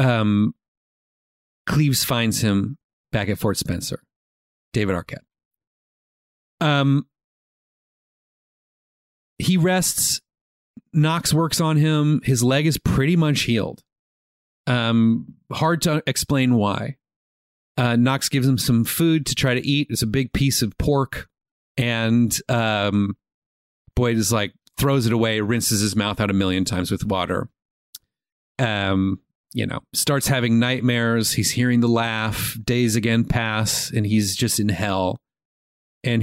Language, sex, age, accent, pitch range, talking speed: English, male, 40-59, American, 100-130 Hz, 135 wpm